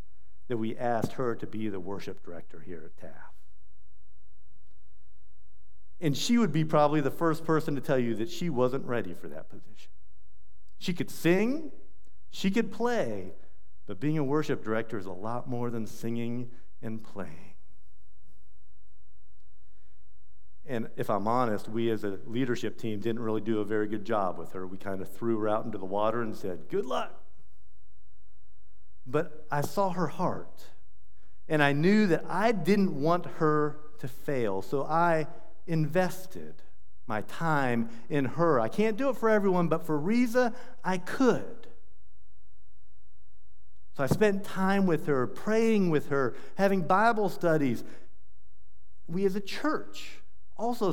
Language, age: English, 50-69